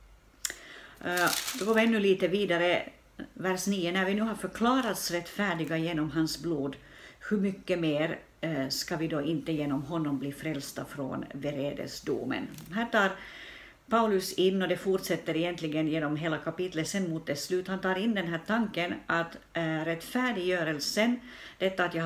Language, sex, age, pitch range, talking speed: Swedish, female, 60-79, 155-185 Hz, 150 wpm